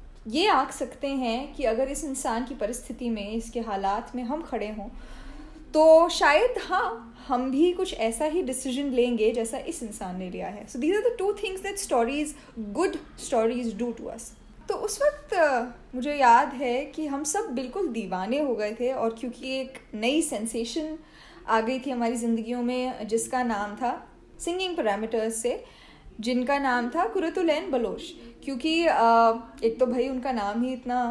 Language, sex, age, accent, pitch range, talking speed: Hindi, female, 10-29, native, 235-325 Hz, 175 wpm